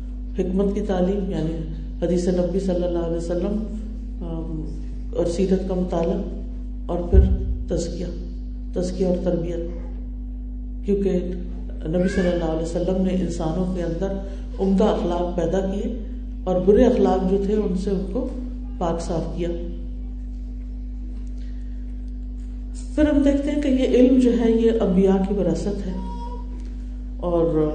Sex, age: female, 50-69